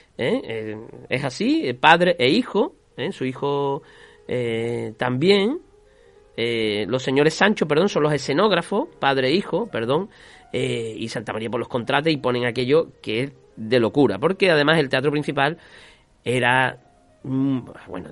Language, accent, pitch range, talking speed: Spanish, Spanish, 125-180 Hz, 140 wpm